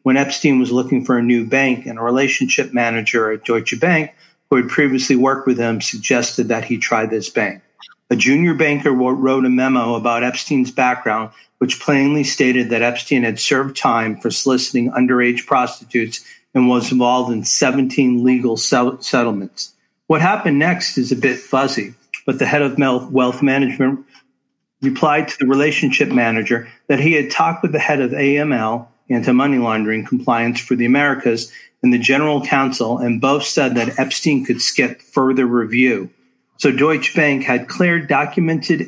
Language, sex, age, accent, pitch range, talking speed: English, male, 50-69, American, 120-145 Hz, 165 wpm